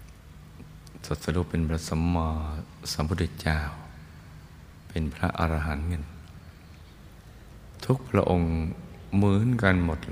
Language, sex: Thai, male